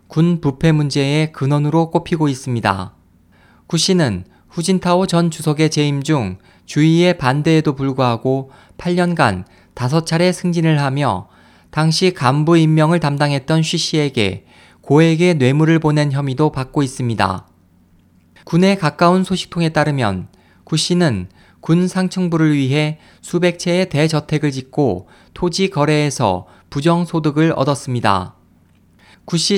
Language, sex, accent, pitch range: Korean, male, native, 120-165 Hz